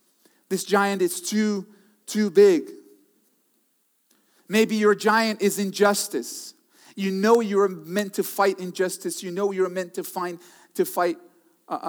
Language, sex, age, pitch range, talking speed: English, male, 40-59, 185-300 Hz, 135 wpm